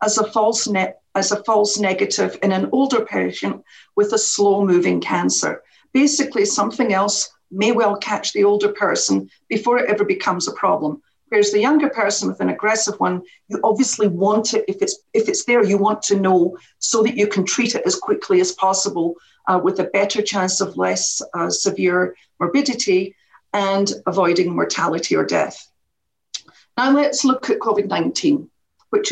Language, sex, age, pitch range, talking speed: English, female, 50-69, 195-265 Hz, 170 wpm